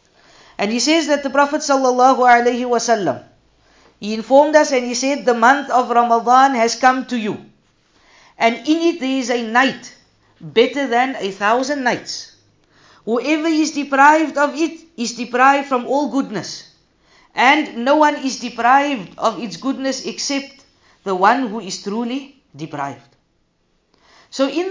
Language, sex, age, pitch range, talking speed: English, female, 50-69, 235-285 Hz, 150 wpm